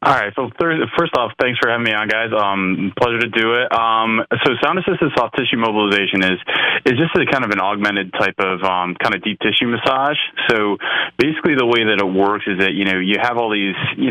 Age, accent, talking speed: 20-39, American, 235 wpm